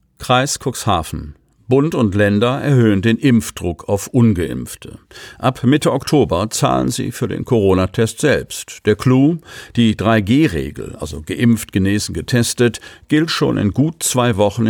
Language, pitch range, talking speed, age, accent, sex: German, 100-125 Hz, 135 wpm, 50-69, German, male